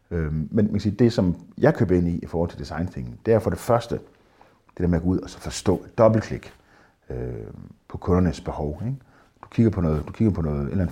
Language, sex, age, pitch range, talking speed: Danish, male, 50-69, 85-120 Hz, 240 wpm